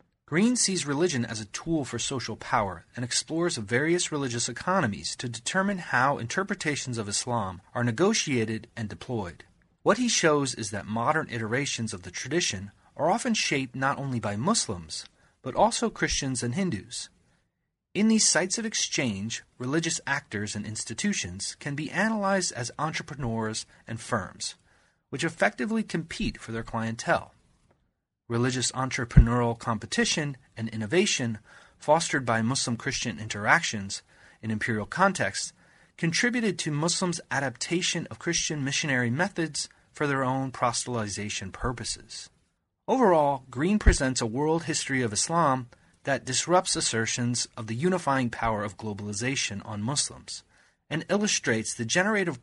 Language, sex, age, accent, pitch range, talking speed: English, male, 30-49, American, 115-165 Hz, 135 wpm